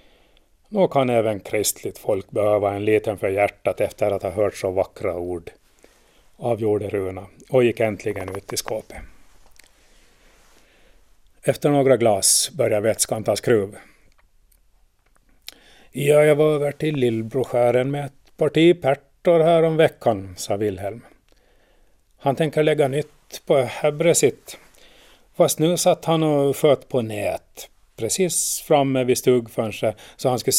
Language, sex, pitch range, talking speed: Swedish, male, 110-150 Hz, 135 wpm